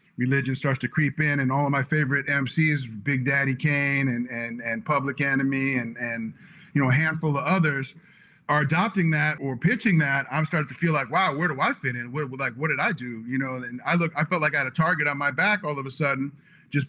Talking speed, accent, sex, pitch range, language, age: 250 wpm, American, male, 140-185 Hz, English, 40-59